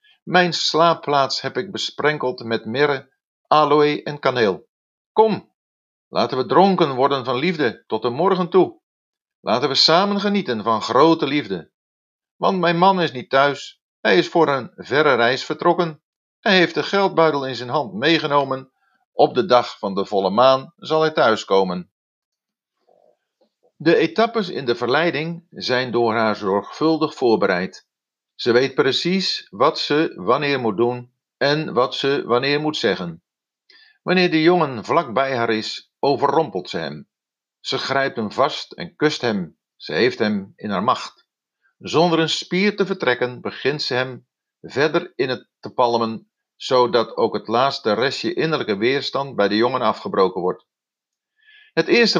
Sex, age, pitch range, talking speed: male, 50-69, 125-175 Hz, 155 wpm